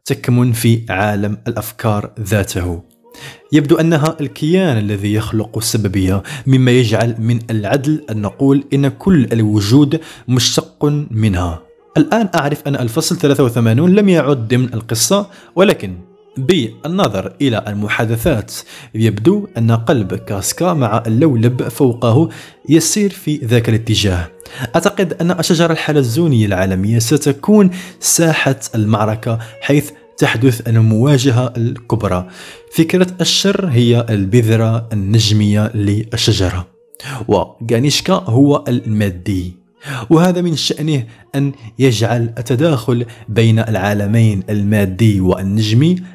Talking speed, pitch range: 100 wpm, 110-155 Hz